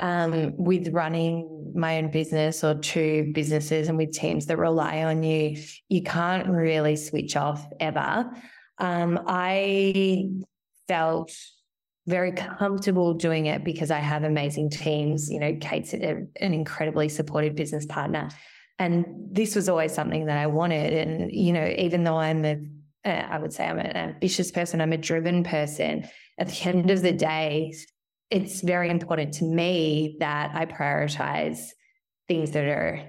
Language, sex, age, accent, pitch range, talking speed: English, female, 20-39, Australian, 150-175 Hz, 155 wpm